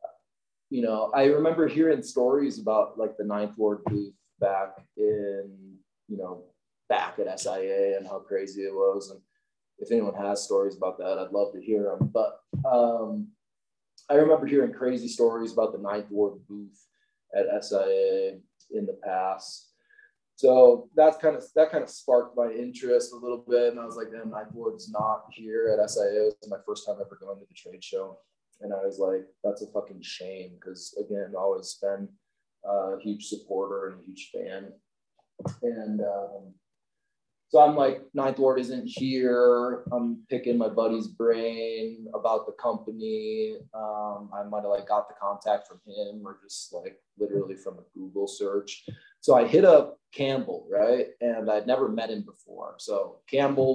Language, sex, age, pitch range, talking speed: English, male, 20-39, 105-165 Hz, 175 wpm